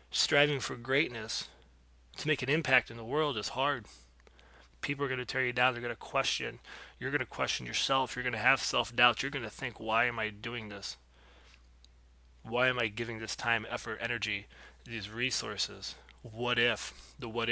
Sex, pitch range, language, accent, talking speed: male, 95-130 Hz, English, American, 190 wpm